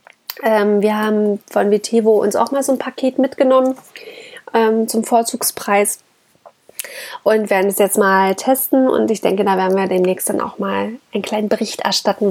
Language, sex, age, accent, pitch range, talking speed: German, female, 20-39, German, 195-240 Hz, 160 wpm